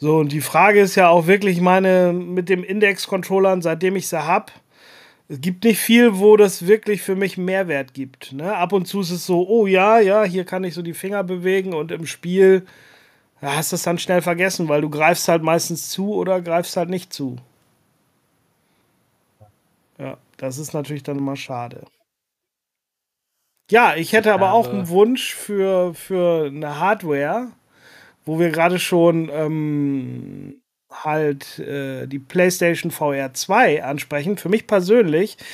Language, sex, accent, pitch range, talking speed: German, male, German, 155-195 Hz, 160 wpm